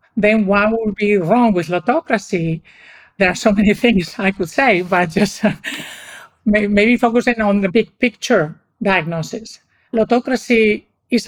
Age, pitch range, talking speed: 50-69, 180-225 Hz, 140 wpm